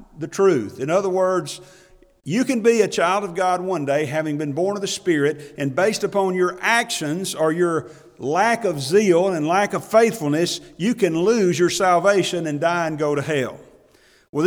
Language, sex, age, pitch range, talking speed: English, male, 40-59, 170-205 Hz, 190 wpm